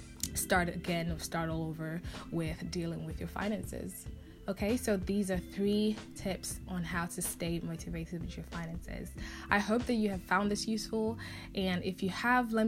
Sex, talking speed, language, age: female, 180 wpm, English, 10-29